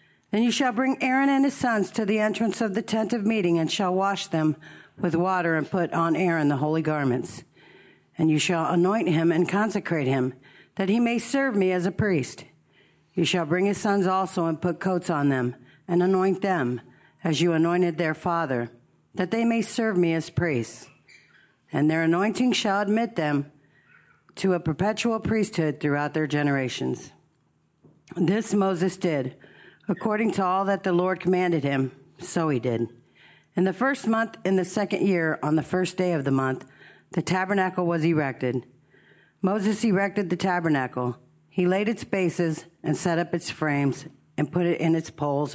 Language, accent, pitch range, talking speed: English, American, 150-195 Hz, 180 wpm